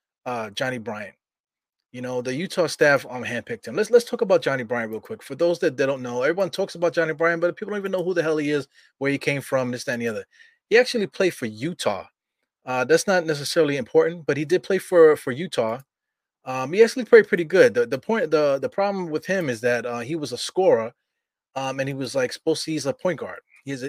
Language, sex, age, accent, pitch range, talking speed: English, male, 20-39, American, 125-170 Hz, 250 wpm